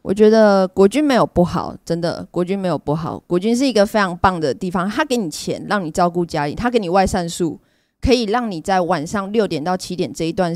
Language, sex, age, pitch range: Chinese, female, 20-39, 170-220 Hz